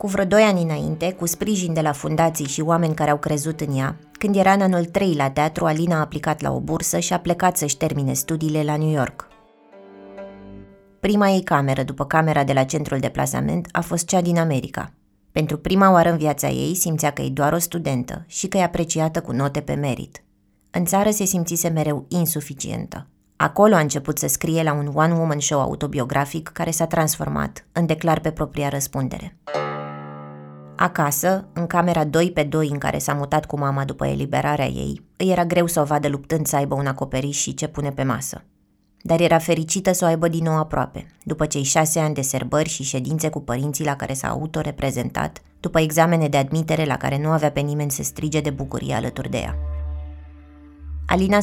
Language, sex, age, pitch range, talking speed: Romanian, female, 20-39, 135-165 Hz, 195 wpm